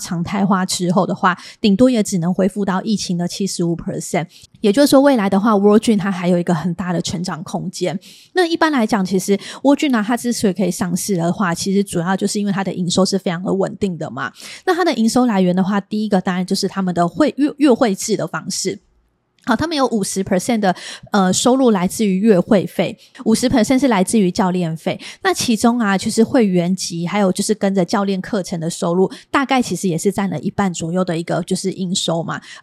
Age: 20-39